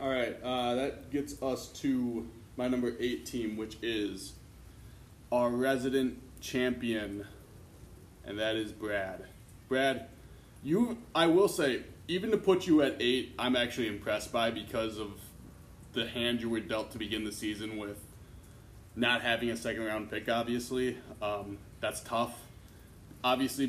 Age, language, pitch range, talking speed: 20-39, English, 105-125 Hz, 145 wpm